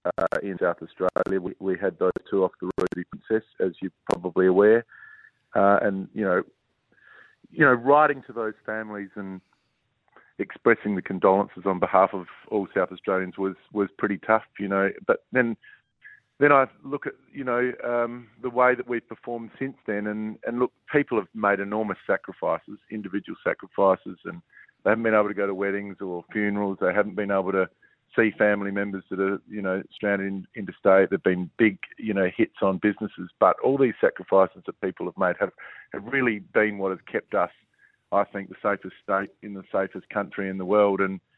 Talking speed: 190 wpm